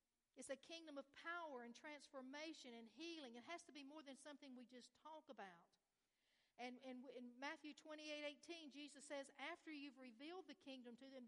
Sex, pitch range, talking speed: female, 240-305 Hz, 185 wpm